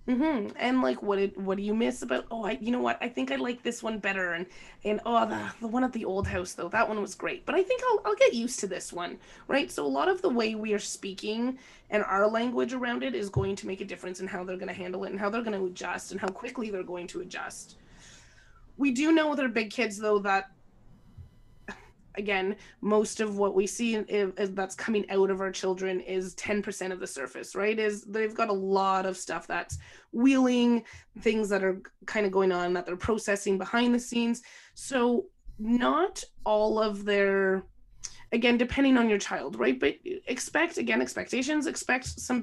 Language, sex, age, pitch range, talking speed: English, female, 20-39, 190-235 Hz, 220 wpm